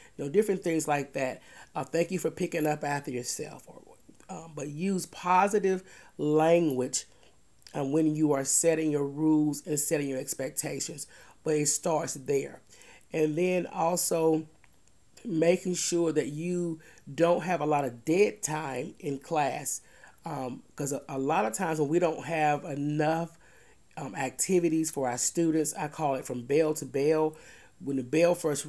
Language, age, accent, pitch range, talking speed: English, 30-49, American, 140-165 Hz, 165 wpm